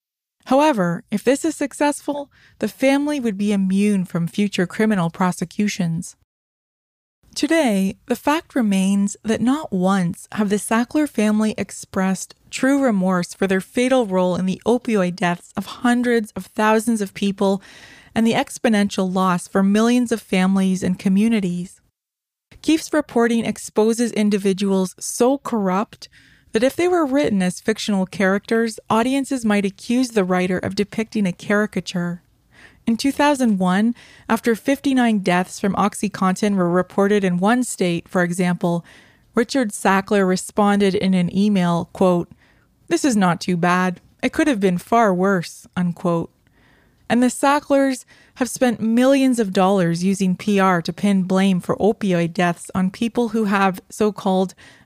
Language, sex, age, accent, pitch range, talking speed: English, female, 20-39, American, 185-235 Hz, 140 wpm